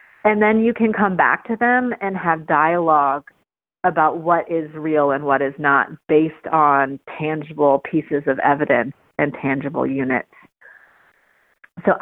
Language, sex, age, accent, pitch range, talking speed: English, female, 30-49, American, 150-180 Hz, 145 wpm